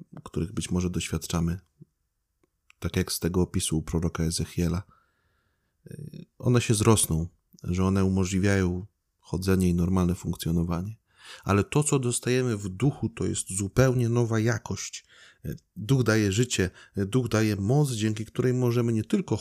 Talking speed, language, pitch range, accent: 135 wpm, Polish, 90-110 Hz, native